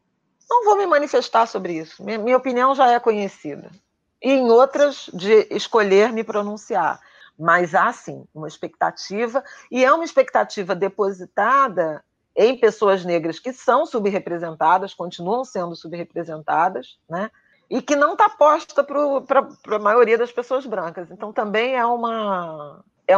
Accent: Brazilian